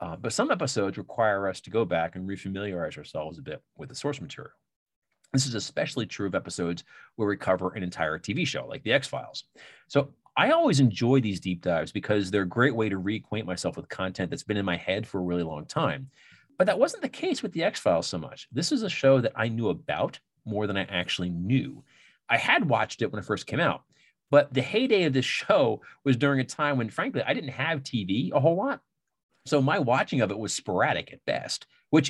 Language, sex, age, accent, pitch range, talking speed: English, male, 30-49, American, 100-140 Hz, 230 wpm